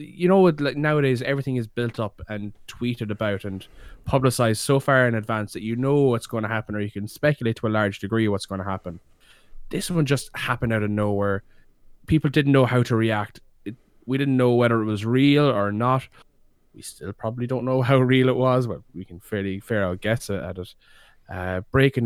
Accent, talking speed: Irish, 210 wpm